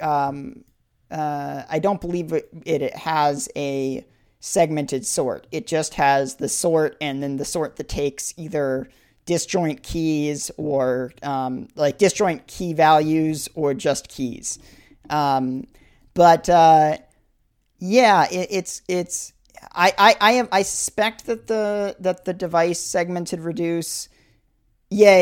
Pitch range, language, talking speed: 140-175 Hz, English, 130 wpm